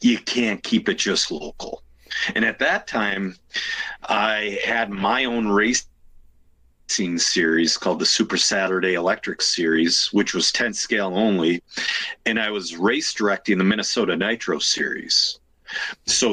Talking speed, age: 135 wpm, 40-59